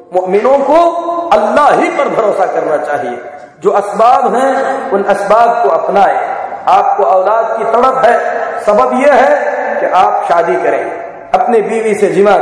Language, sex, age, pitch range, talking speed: Hindi, male, 50-69, 220-305 Hz, 150 wpm